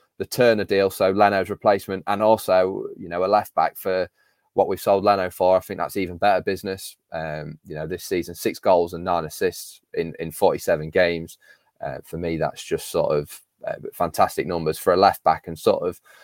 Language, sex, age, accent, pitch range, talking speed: English, male, 20-39, British, 95-110 Hz, 200 wpm